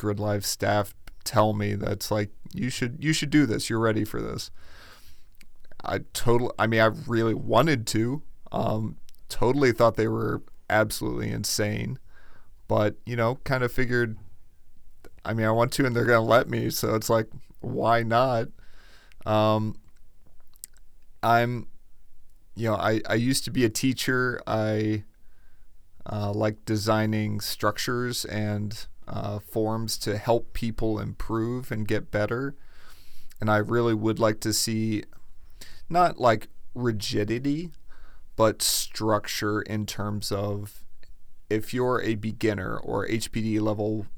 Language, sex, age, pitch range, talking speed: English, male, 30-49, 105-115 Hz, 135 wpm